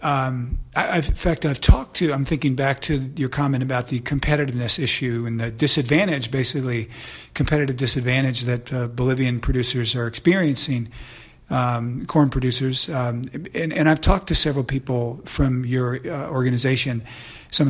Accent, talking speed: American, 150 wpm